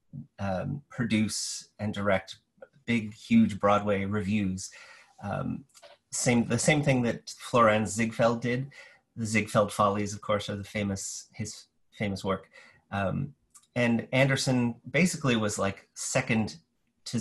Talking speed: 125 wpm